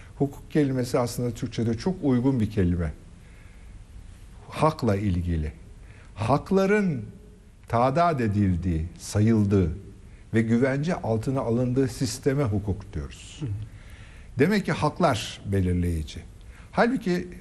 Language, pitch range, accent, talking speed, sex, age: Turkish, 100-145 Hz, native, 90 wpm, male, 60-79